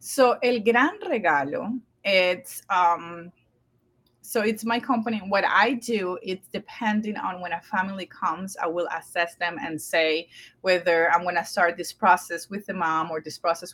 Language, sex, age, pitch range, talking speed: English, female, 30-49, 170-210 Hz, 165 wpm